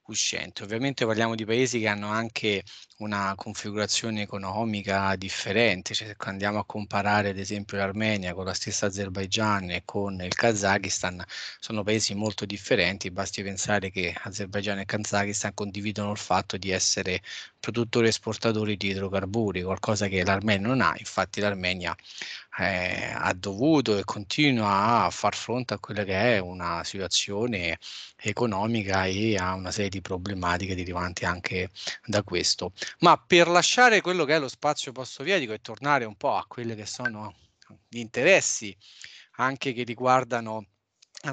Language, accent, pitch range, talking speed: English, Italian, 100-115 Hz, 150 wpm